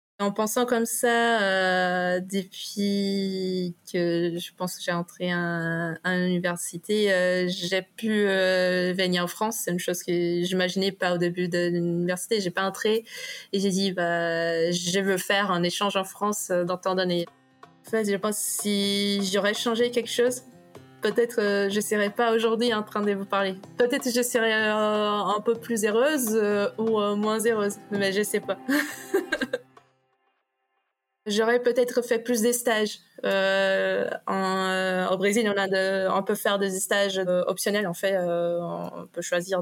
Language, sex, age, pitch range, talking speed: French, female, 20-39, 180-215 Hz, 175 wpm